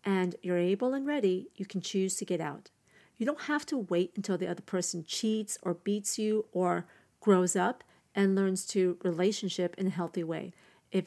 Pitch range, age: 185-225 Hz, 40-59